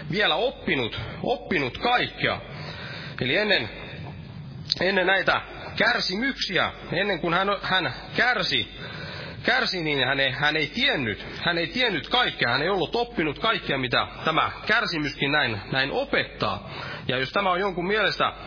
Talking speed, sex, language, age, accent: 135 wpm, male, Finnish, 30-49, native